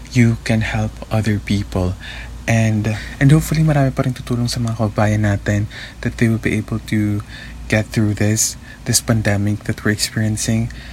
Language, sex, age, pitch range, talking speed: Filipino, male, 20-39, 105-120 Hz, 145 wpm